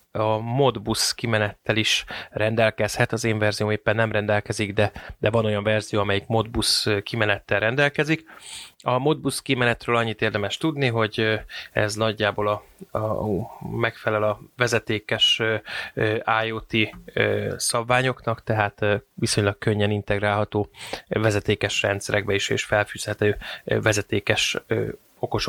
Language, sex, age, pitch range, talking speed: Hungarian, male, 20-39, 105-115 Hz, 110 wpm